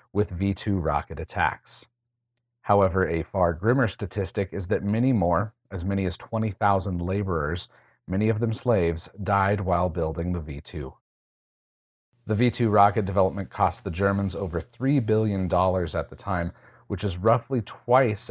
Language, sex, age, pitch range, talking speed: English, male, 30-49, 90-110 Hz, 150 wpm